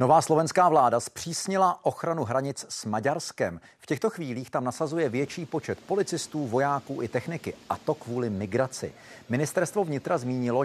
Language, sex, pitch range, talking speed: Czech, male, 125-155 Hz, 145 wpm